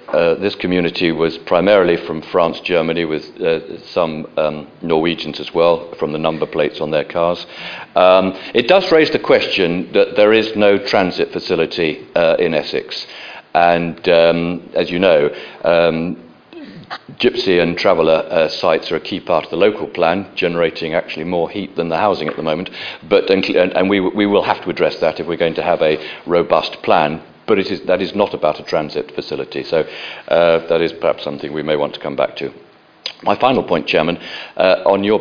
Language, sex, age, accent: English, male, 50-69, British